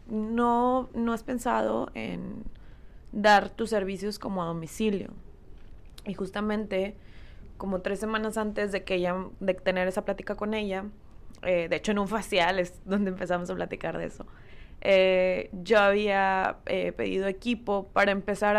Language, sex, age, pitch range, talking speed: Spanish, female, 20-39, 180-210 Hz, 150 wpm